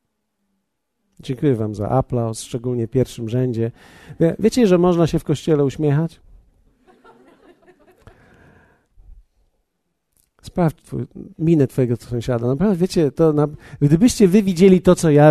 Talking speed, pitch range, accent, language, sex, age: 120 wpm, 145-195 Hz, native, Polish, male, 50-69